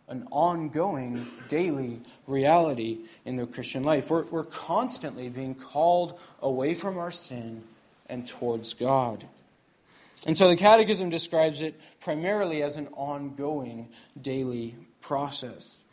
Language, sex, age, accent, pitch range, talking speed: English, male, 20-39, American, 130-170 Hz, 120 wpm